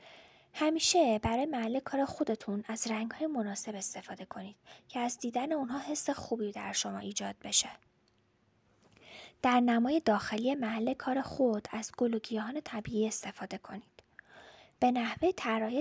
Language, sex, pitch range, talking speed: Persian, female, 215-265 Hz, 130 wpm